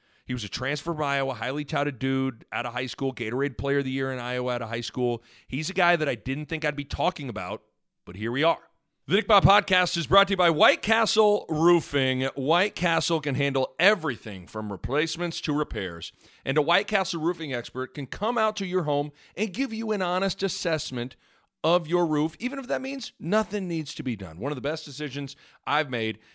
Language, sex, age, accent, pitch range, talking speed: English, male, 40-59, American, 120-165 Hz, 220 wpm